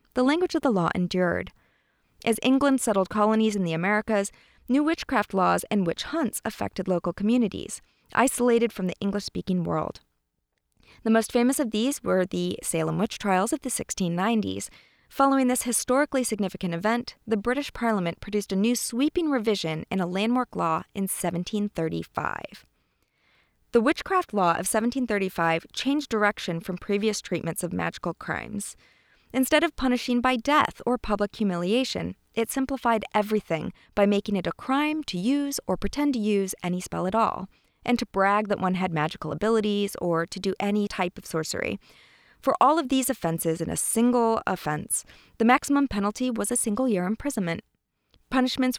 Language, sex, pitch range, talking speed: English, female, 185-250 Hz, 160 wpm